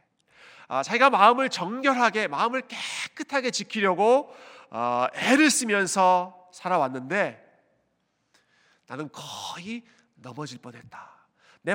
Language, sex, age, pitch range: Korean, male, 40-59, 160-240 Hz